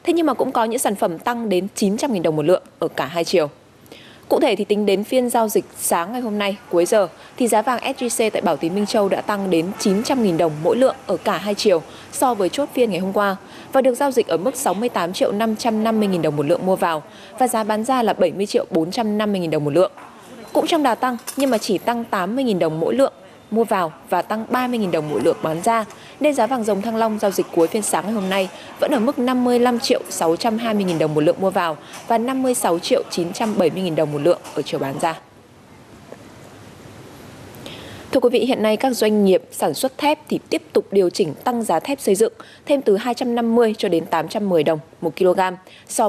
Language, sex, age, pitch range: Vietnamese, female, 20-39, 180-245 Hz